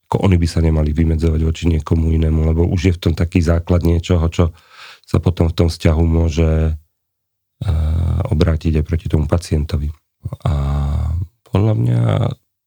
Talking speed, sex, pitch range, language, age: 150 wpm, male, 80-95 Hz, Slovak, 40-59